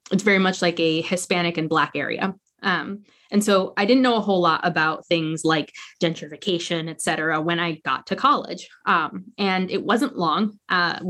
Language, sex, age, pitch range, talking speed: English, female, 20-39, 170-210 Hz, 190 wpm